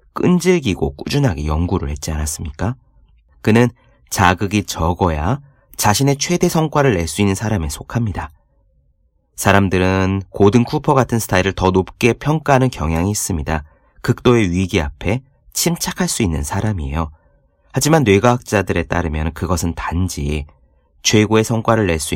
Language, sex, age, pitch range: Korean, male, 30-49, 85-125 Hz